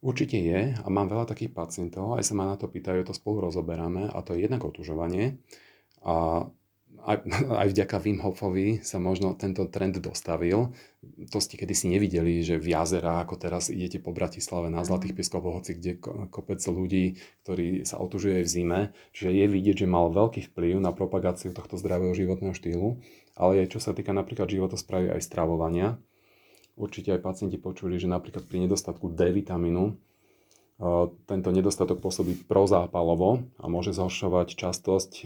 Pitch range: 90-100 Hz